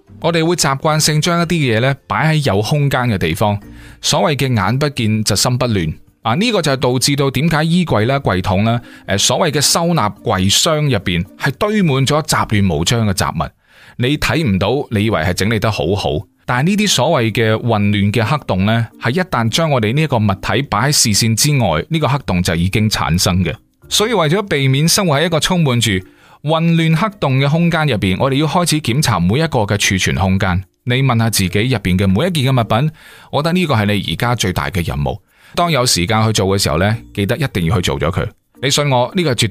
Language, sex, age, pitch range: Chinese, male, 20-39, 105-150 Hz